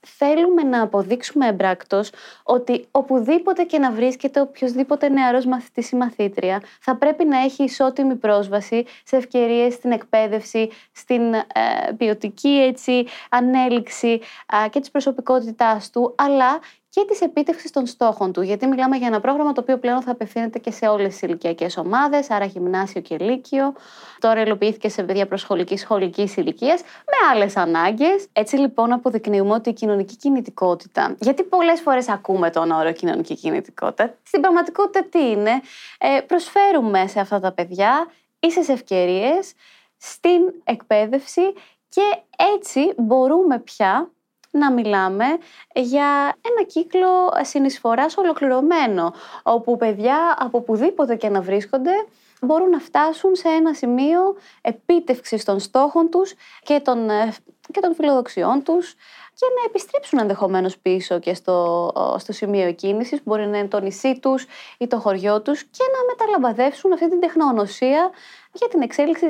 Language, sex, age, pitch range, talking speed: Greek, female, 20-39, 215-320 Hz, 140 wpm